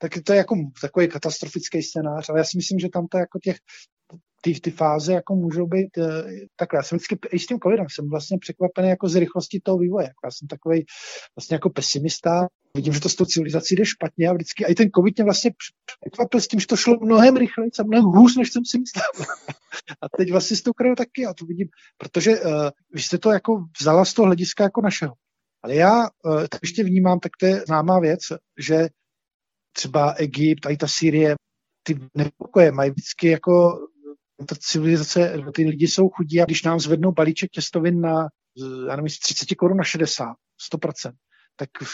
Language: Czech